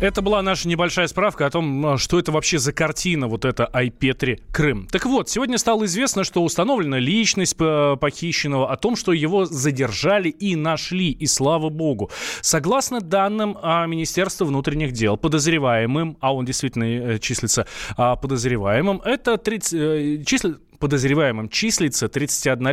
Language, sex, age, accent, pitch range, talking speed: Russian, male, 20-39, native, 130-175 Hz, 135 wpm